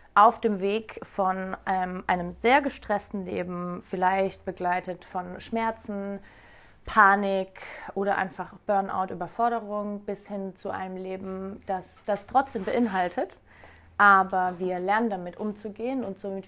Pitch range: 185-220 Hz